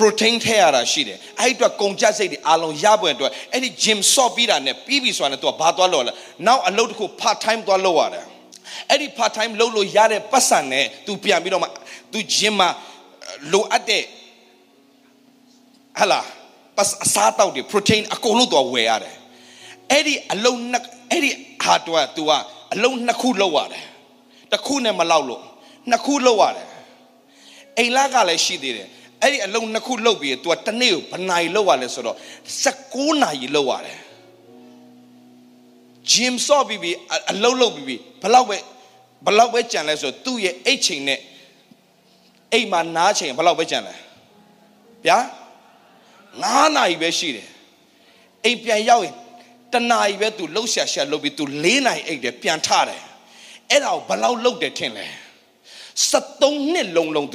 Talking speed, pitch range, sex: 120 wpm, 170-250 Hz, male